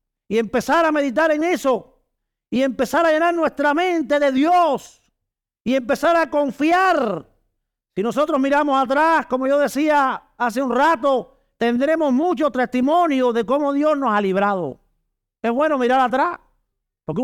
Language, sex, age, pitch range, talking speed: Spanish, male, 50-69, 190-290 Hz, 145 wpm